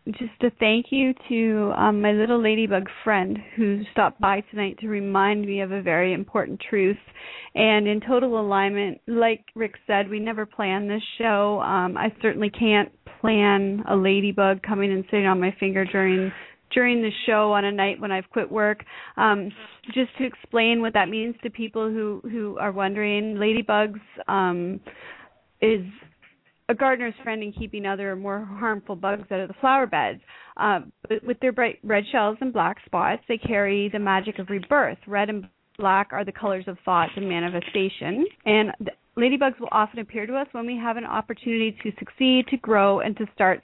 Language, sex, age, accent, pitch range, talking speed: English, female, 30-49, American, 195-230 Hz, 180 wpm